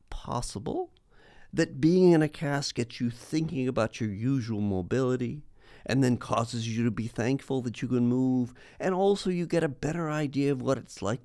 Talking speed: 185 wpm